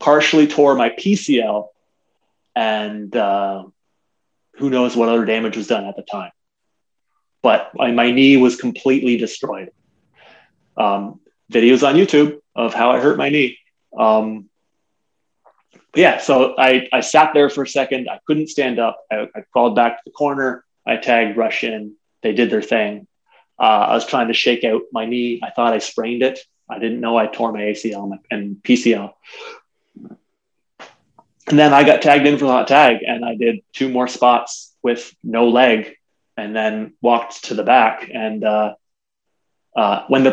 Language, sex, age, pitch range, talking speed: English, male, 20-39, 115-135 Hz, 170 wpm